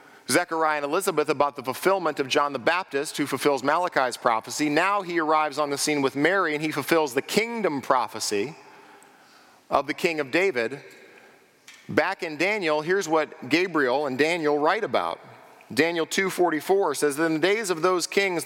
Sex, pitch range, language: male, 140-170 Hz, English